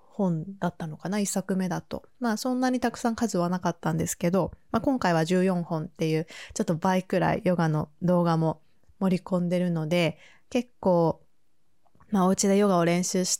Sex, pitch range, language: female, 170-205 Hz, Japanese